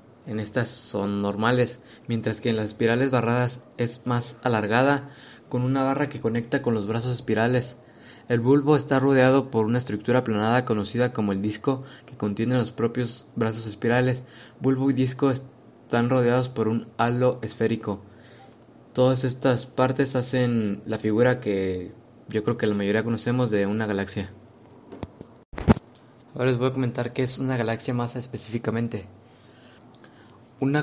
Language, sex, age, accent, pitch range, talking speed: Spanish, male, 20-39, Mexican, 115-130 Hz, 150 wpm